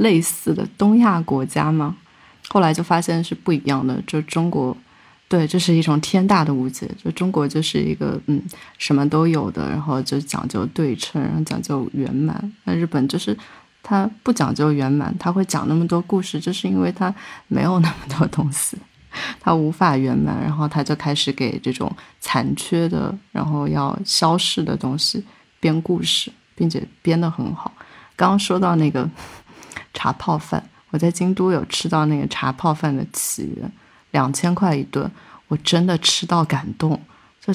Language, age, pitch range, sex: Chinese, 20-39, 150-180 Hz, female